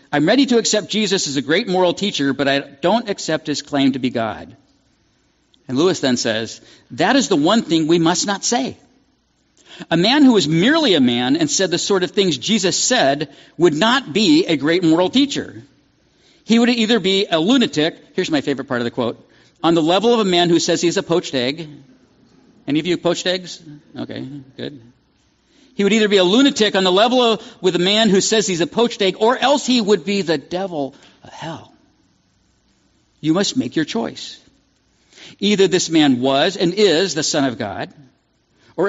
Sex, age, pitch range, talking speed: male, 50-69, 160-235 Hz, 200 wpm